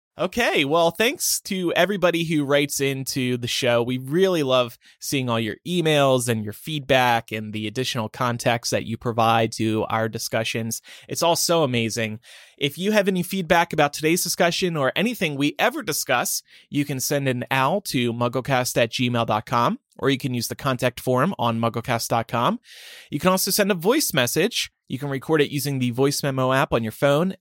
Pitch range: 125-170 Hz